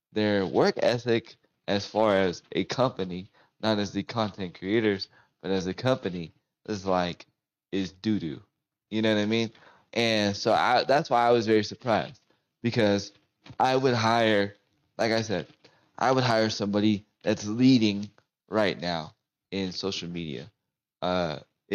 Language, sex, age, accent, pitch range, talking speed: English, male, 20-39, American, 95-115 Hz, 150 wpm